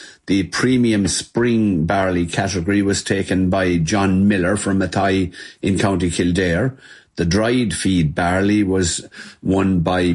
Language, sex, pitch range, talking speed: English, male, 95-105 Hz, 130 wpm